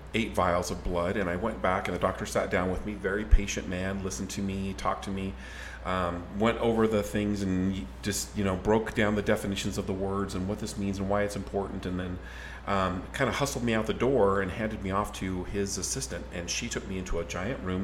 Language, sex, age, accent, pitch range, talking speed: English, male, 40-59, American, 85-105 Hz, 245 wpm